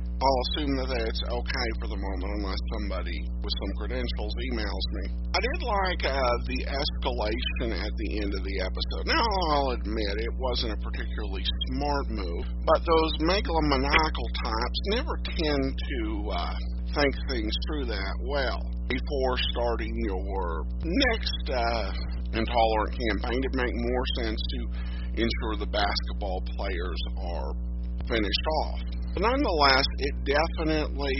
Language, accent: English, American